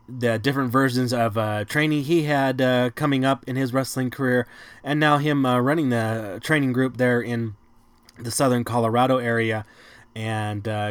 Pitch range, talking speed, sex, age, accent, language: 115-135 Hz, 170 wpm, male, 20-39, American, English